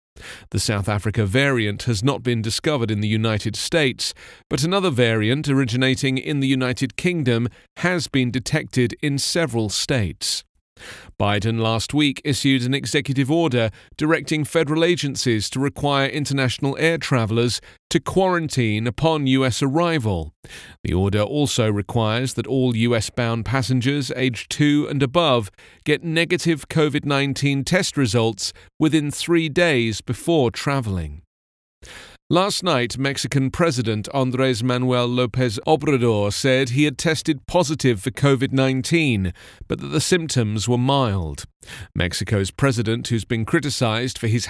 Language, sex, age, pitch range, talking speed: English, male, 40-59, 115-150 Hz, 130 wpm